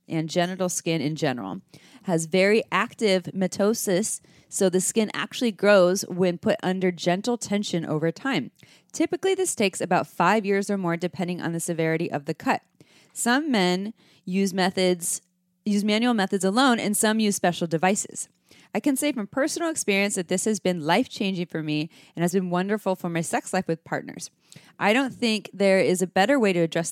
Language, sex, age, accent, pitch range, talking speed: English, female, 20-39, American, 165-205 Hz, 185 wpm